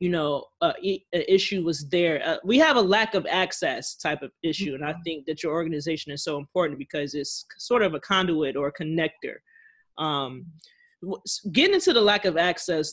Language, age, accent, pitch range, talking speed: English, 20-39, American, 160-200 Hz, 190 wpm